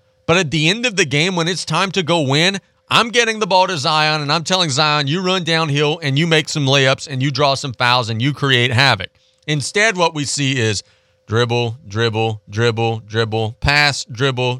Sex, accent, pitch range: male, American, 120-165 Hz